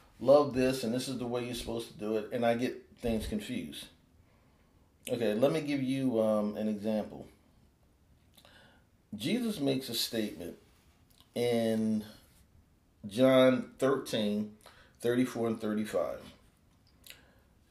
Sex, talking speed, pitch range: male, 115 wpm, 105-140 Hz